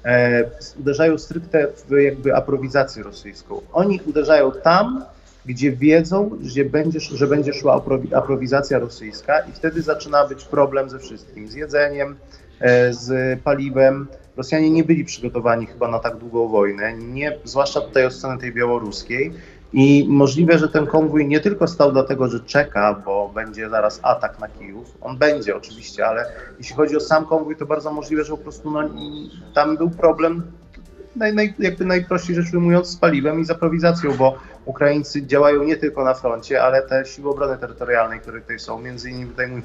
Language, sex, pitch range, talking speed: Polish, male, 125-150 Hz, 160 wpm